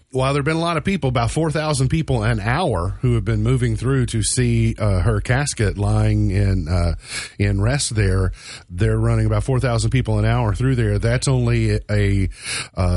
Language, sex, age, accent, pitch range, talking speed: English, male, 40-59, American, 100-125 Hz, 195 wpm